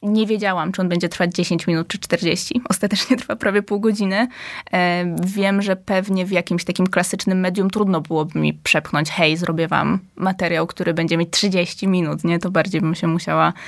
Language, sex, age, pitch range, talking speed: Polish, female, 20-39, 175-200 Hz, 190 wpm